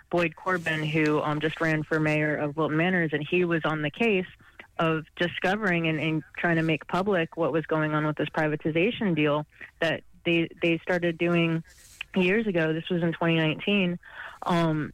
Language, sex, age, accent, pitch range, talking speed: English, female, 20-39, American, 155-175 Hz, 175 wpm